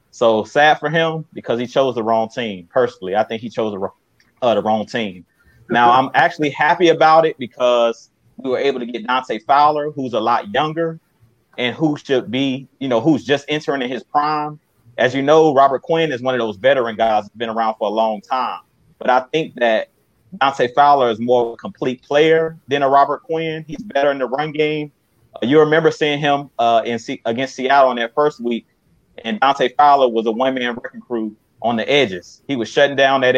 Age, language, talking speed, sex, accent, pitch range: 30-49, English, 220 wpm, male, American, 120-155 Hz